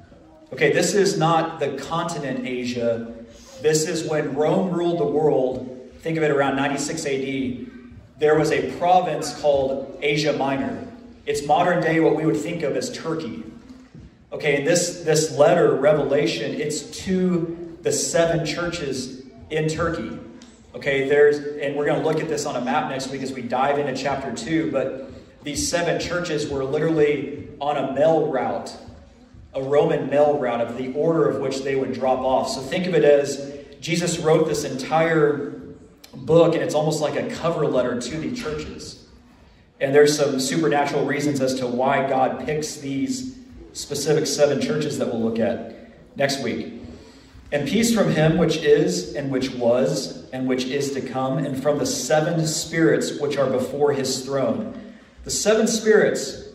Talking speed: 170 wpm